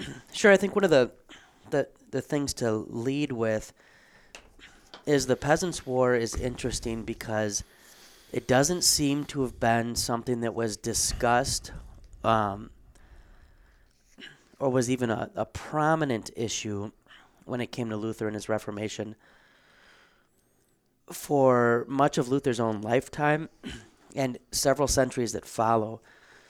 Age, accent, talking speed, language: 30-49, American, 125 wpm, English